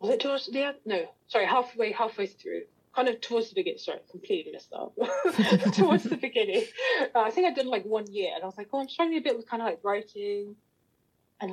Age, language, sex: 30-49, English, female